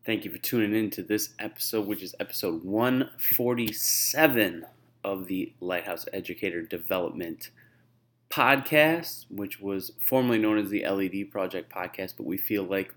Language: English